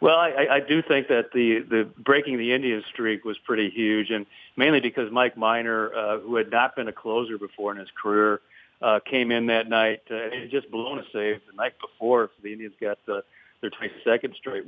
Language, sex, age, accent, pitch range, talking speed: English, male, 50-69, American, 110-125 Hz, 215 wpm